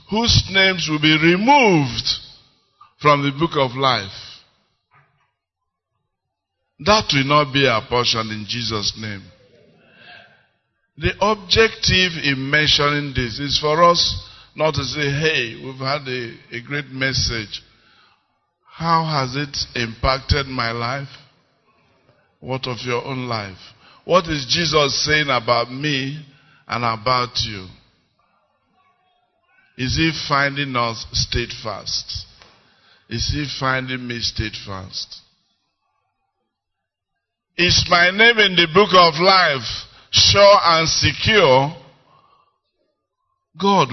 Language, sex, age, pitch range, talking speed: English, male, 50-69, 115-150 Hz, 105 wpm